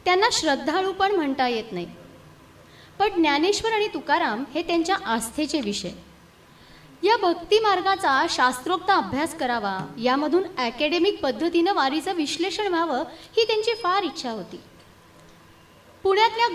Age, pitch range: 20-39, 265-380 Hz